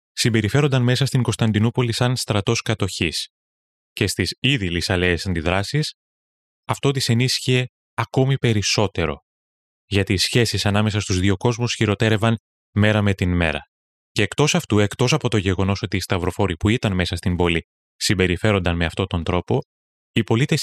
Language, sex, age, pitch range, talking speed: Greek, male, 20-39, 95-120 Hz, 150 wpm